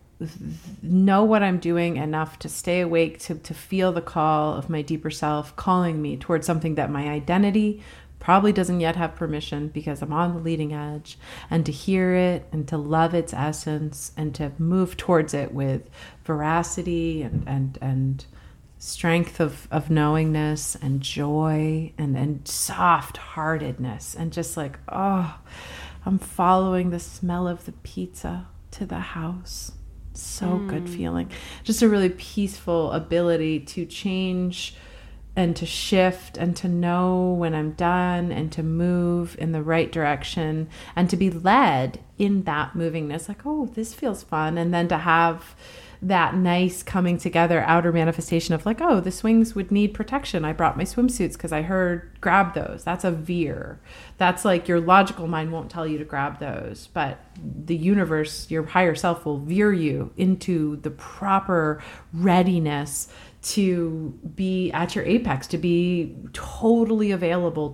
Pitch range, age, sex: 155-180 Hz, 30-49, female